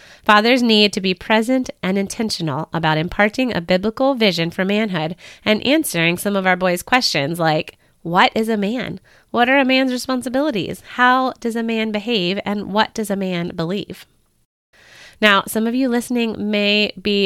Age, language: 20-39, English